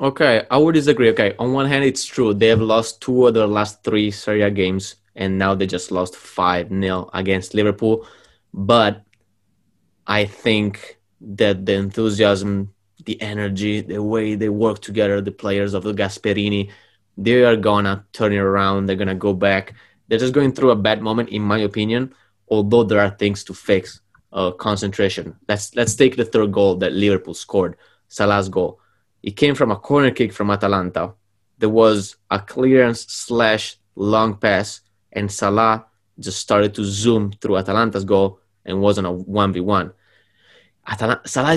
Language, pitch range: English, 100-110 Hz